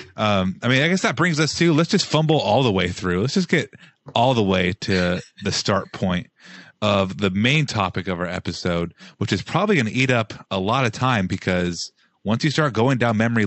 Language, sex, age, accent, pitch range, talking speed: English, male, 30-49, American, 95-130 Hz, 225 wpm